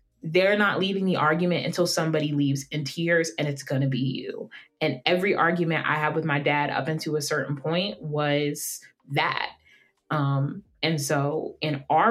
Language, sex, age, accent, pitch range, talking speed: English, female, 20-39, American, 145-175 Hz, 180 wpm